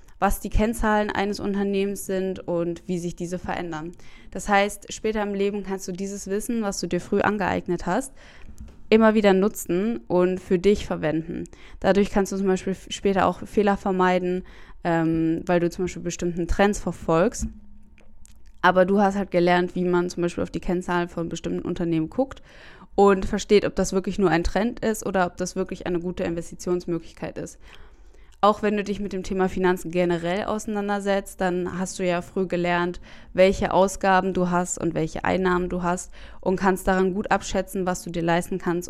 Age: 20-39